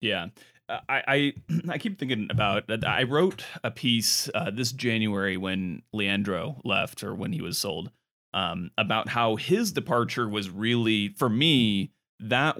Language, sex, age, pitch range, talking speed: English, male, 30-49, 100-120 Hz, 160 wpm